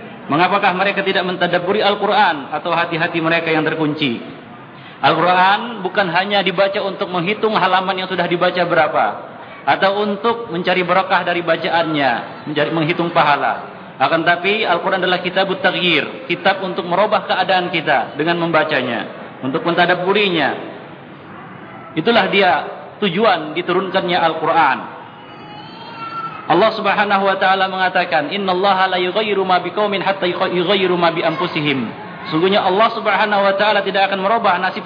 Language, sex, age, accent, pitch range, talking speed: Indonesian, male, 50-69, native, 175-200 Hz, 110 wpm